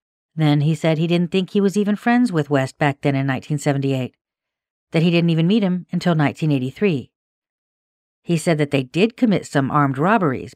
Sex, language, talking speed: female, English, 190 wpm